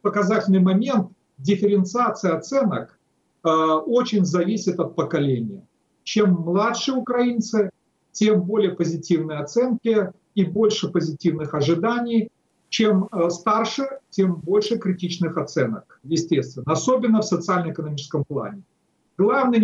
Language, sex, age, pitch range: Russian, male, 40-59, 170-220 Hz